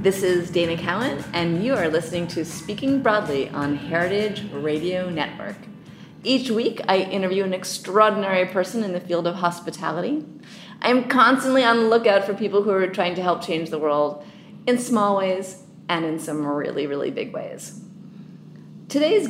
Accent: American